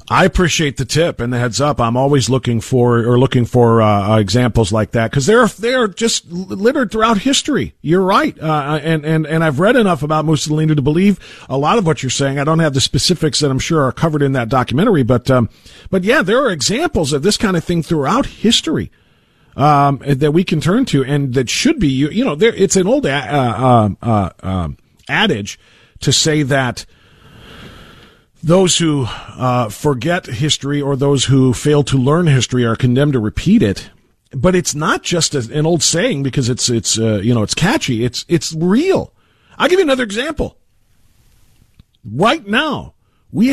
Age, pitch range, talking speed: 40-59, 125-190 Hz, 195 wpm